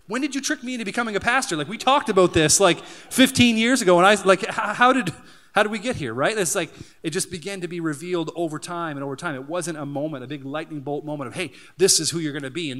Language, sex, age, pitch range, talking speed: English, male, 30-49, 135-170 Hz, 275 wpm